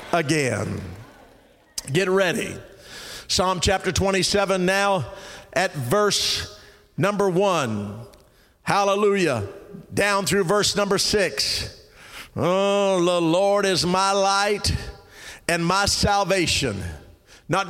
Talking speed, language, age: 90 wpm, English, 50-69